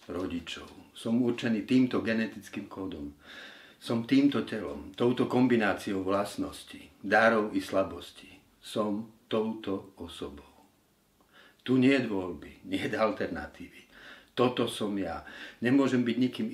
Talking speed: 115 wpm